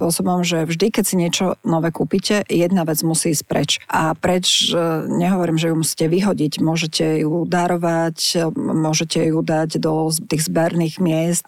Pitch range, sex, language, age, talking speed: 165-185 Hz, female, Slovak, 40-59, 155 wpm